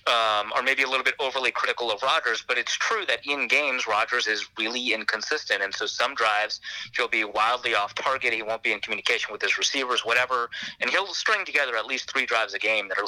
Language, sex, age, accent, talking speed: English, male, 30-49, American, 225 wpm